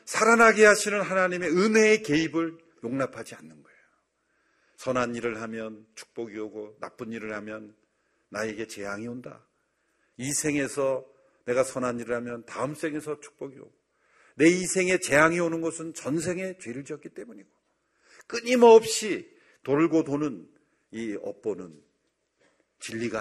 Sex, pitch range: male, 130-215 Hz